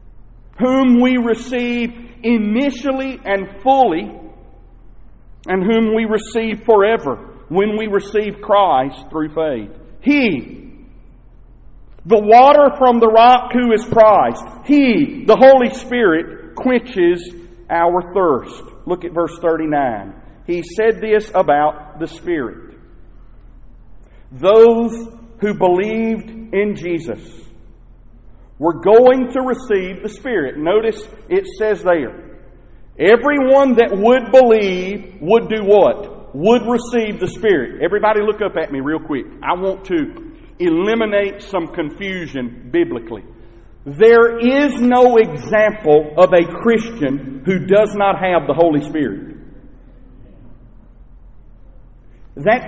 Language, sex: English, male